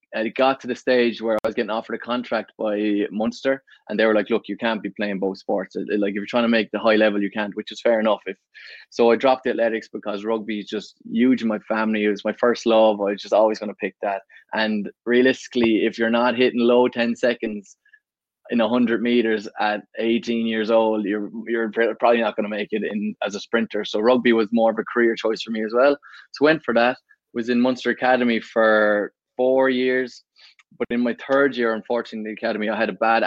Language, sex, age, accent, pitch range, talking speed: English, male, 20-39, Irish, 105-120 Hz, 245 wpm